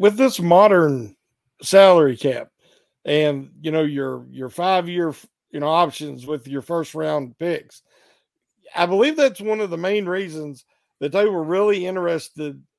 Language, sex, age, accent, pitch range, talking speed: English, male, 50-69, American, 155-205 Hz, 155 wpm